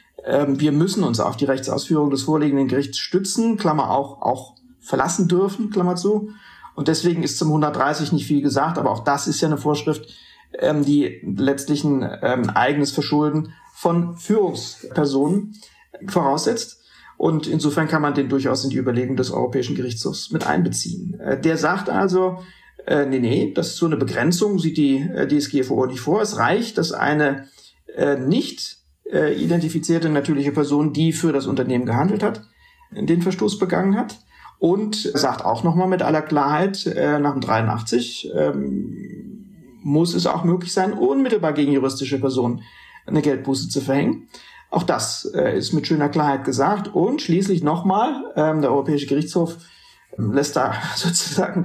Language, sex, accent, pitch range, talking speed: German, male, German, 140-180 Hz, 155 wpm